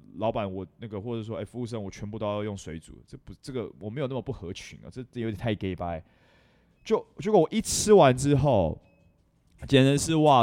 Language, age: Chinese, 20-39